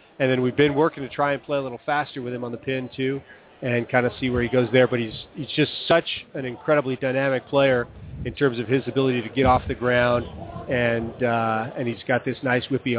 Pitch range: 120-140 Hz